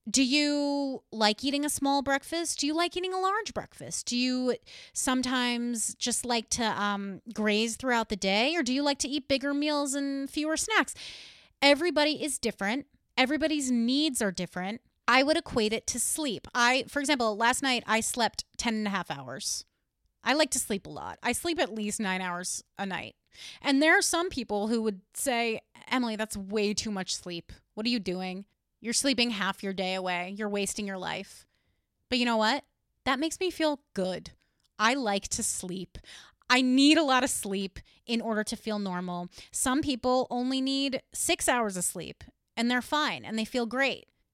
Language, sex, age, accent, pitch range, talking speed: English, female, 30-49, American, 205-275 Hz, 190 wpm